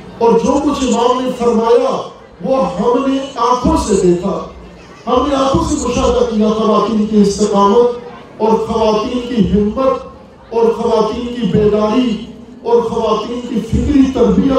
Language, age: Urdu, 50-69